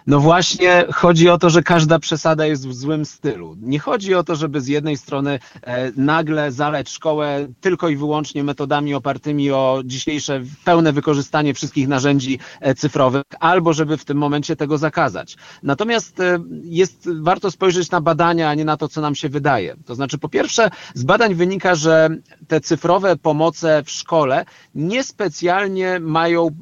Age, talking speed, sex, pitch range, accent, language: 40-59, 160 wpm, male, 145-175 Hz, native, Polish